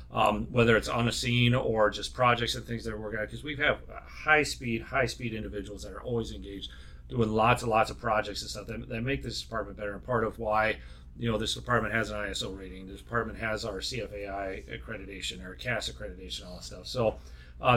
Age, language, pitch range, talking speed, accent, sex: 40-59, English, 105-130 Hz, 225 wpm, American, male